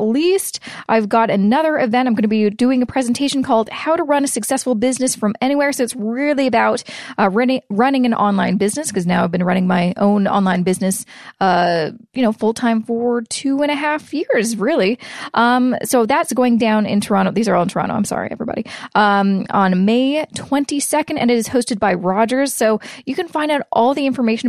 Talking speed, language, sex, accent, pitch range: 205 wpm, English, female, American, 205-255 Hz